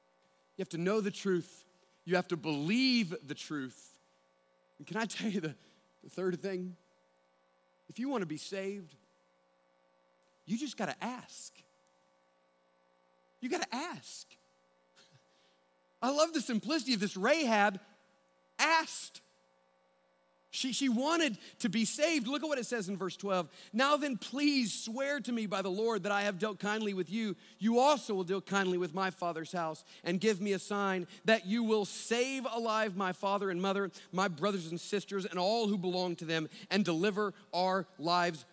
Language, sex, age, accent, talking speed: English, male, 40-59, American, 175 wpm